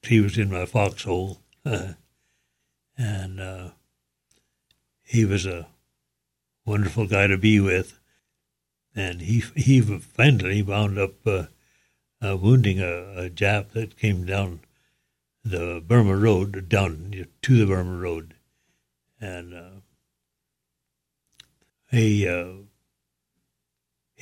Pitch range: 85-110 Hz